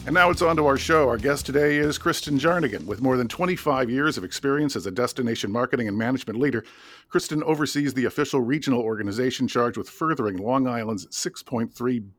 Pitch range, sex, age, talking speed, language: 110-135 Hz, male, 50-69, 190 wpm, English